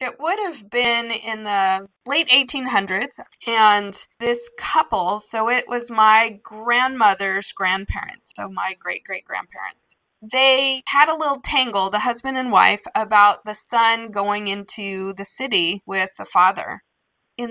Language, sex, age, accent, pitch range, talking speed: English, female, 20-39, American, 200-245 Hz, 135 wpm